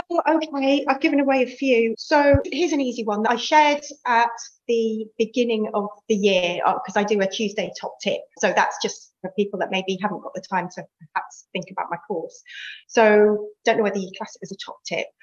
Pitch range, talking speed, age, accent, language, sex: 195-250 Hz, 215 wpm, 30-49, British, English, female